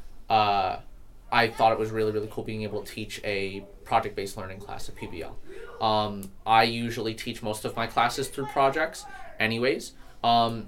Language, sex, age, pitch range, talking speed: English, male, 20-39, 100-115 Hz, 170 wpm